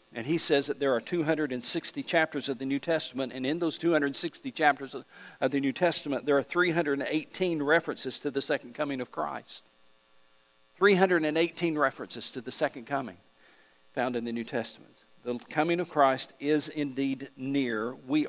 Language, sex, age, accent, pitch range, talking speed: English, male, 50-69, American, 115-150 Hz, 165 wpm